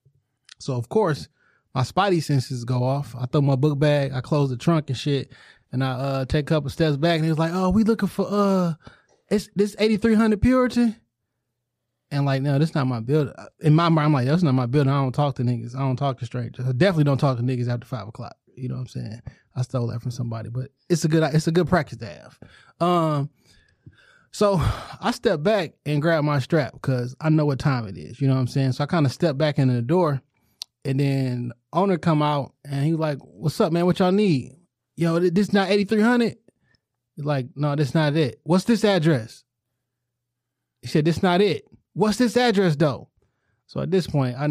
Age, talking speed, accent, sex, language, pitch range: 20-39, 230 wpm, American, male, English, 130-165 Hz